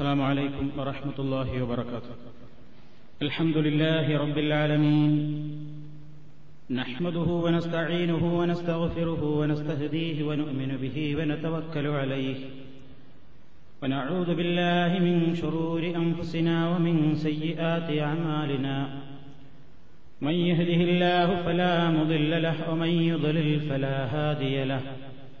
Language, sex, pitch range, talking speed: Malayalam, male, 140-170 Hz, 85 wpm